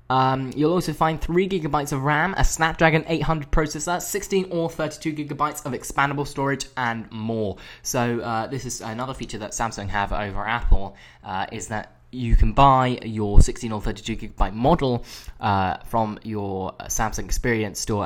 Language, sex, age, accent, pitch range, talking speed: English, male, 10-29, British, 100-145 Hz, 165 wpm